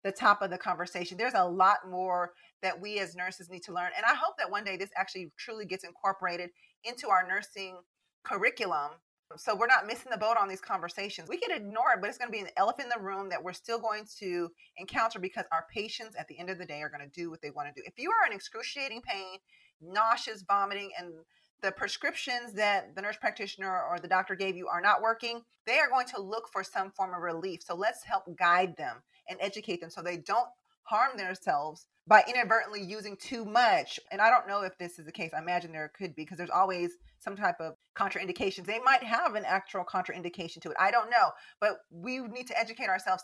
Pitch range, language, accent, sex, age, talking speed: 175-225 Hz, English, American, female, 30-49, 230 wpm